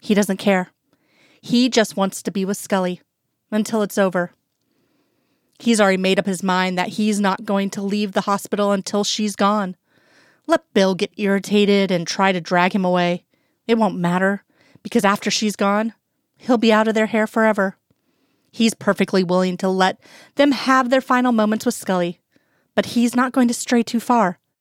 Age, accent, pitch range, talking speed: 30-49, American, 195-235 Hz, 180 wpm